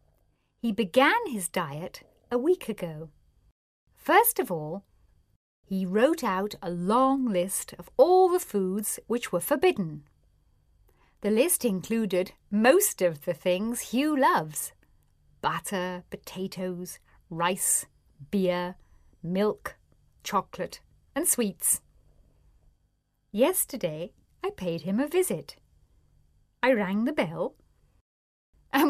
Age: 50-69